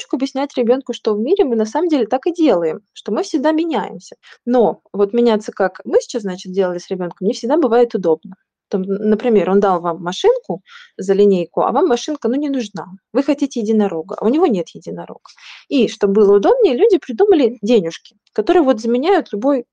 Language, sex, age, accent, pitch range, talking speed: Russian, female, 20-39, native, 195-265 Hz, 190 wpm